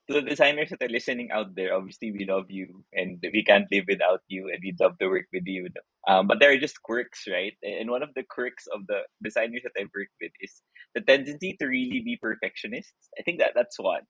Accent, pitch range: native, 115-155 Hz